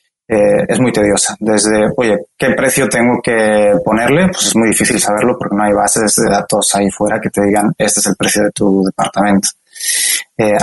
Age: 20-39